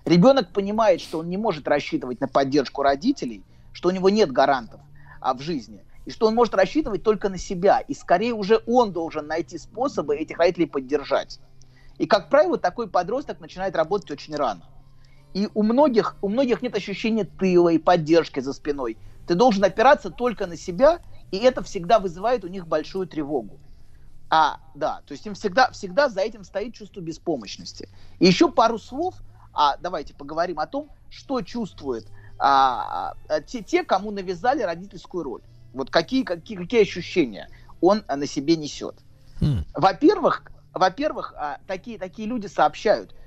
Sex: male